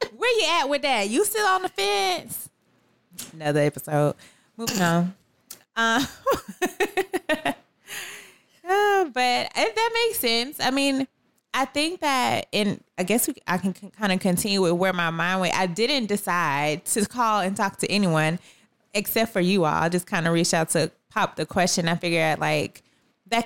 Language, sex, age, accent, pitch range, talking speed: English, female, 20-39, American, 170-220 Hz, 175 wpm